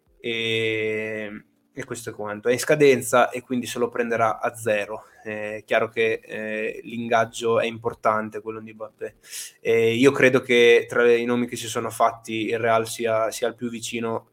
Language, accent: Italian, native